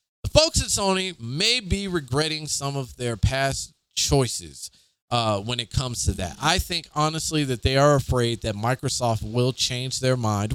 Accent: American